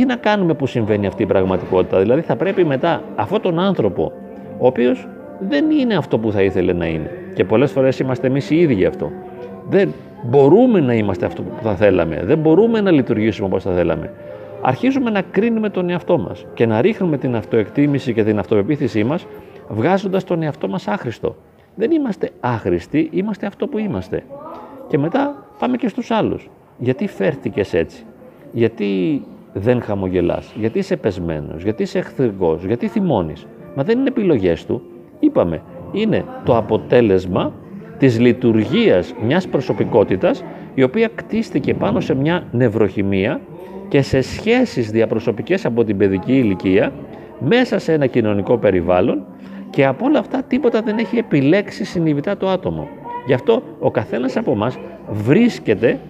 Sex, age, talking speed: male, 40-59, 155 wpm